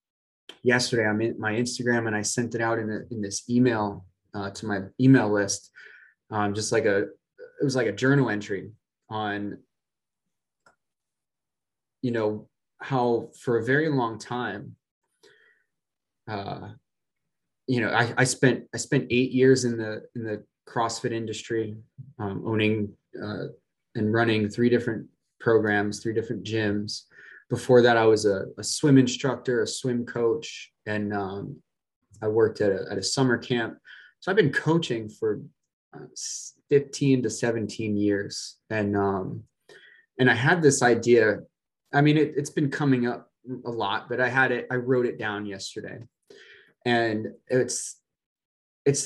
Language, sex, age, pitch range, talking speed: English, male, 20-39, 105-125 Hz, 150 wpm